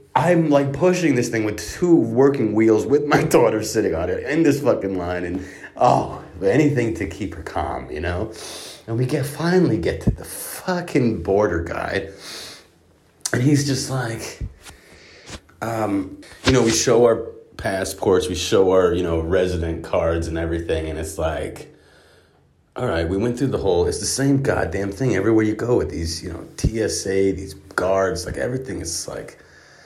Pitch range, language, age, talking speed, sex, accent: 90-135 Hz, English, 30-49, 175 wpm, male, American